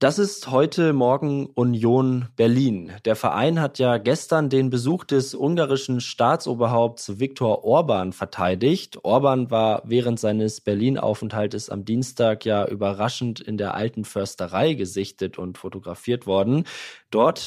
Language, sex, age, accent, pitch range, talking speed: German, male, 20-39, German, 110-135 Hz, 125 wpm